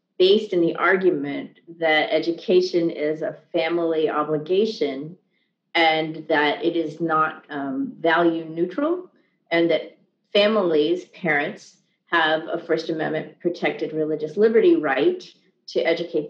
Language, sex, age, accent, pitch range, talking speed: English, female, 40-59, American, 155-185 Hz, 120 wpm